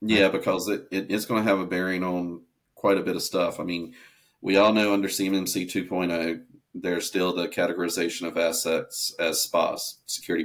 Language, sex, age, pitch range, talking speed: English, male, 40-59, 85-95 Hz, 180 wpm